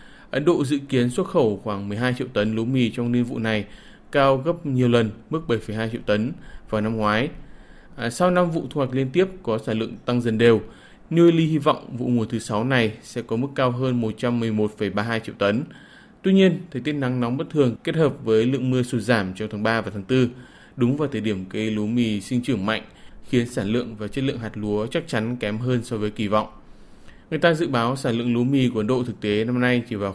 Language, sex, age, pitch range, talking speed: Vietnamese, male, 20-39, 110-135 Hz, 240 wpm